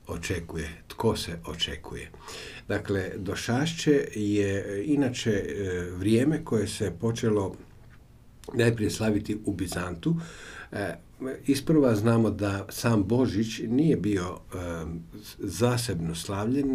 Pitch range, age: 90-115 Hz, 50-69